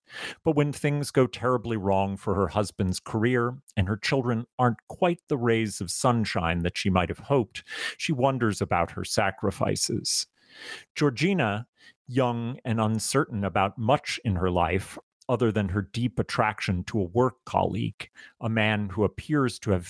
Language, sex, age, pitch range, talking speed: English, male, 40-59, 100-125 Hz, 155 wpm